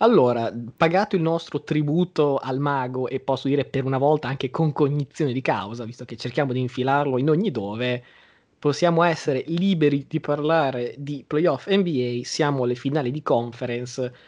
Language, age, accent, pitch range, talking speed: Italian, 20-39, native, 125-145 Hz, 165 wpm